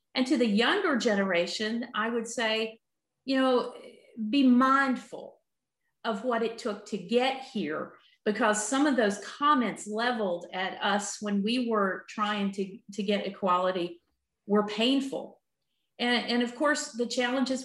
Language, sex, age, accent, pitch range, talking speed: English, female, 40-59, American, 205-255 Hz, 145 wpm